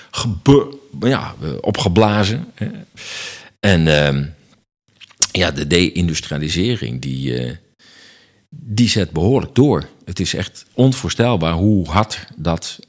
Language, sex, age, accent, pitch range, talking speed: Dutch, male, 50-69, Dutch, 80-115 Hz, 95 wpm